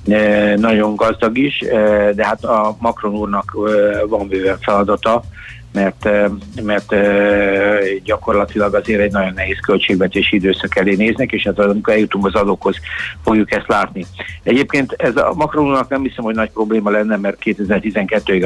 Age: 50-69